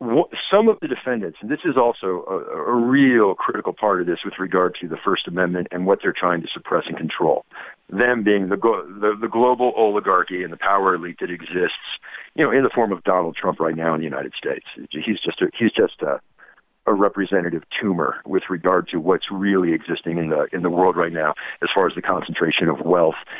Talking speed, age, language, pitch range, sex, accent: 220 wpm, 50-69, English, 90-120 Hz, male, American